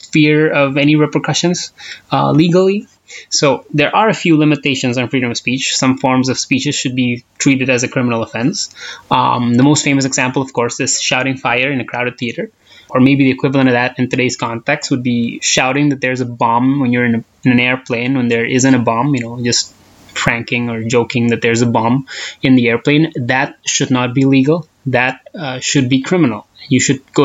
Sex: male